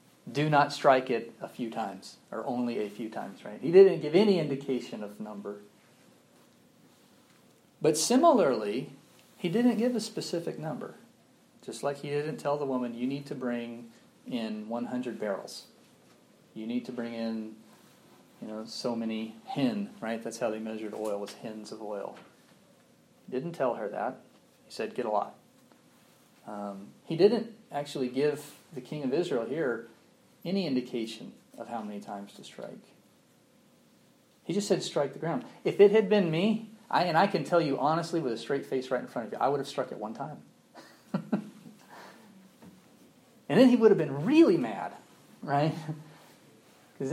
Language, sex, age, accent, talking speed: English, male, 40-59, American, 170 wpm